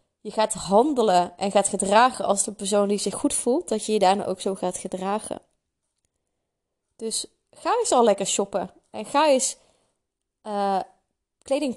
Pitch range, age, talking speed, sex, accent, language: 200-240 Hz, 20-39, 165 wpm, female, Dutch, Dutch